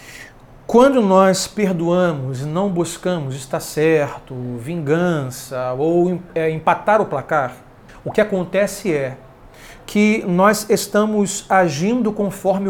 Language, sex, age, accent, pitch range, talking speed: Portuguese, male, 40-59, Brazilian, 145-195 Hz, 105 wpm